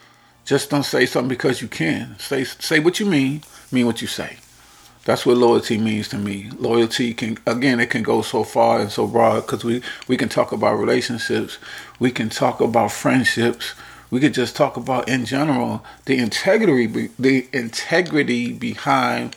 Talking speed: 175 wpm